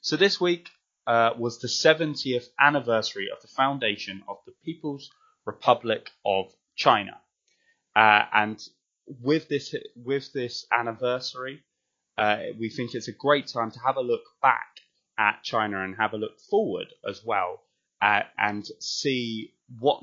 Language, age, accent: English, 20-39, British